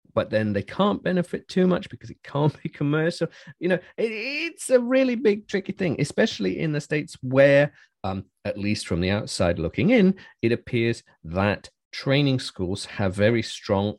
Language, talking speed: English, 175 wpm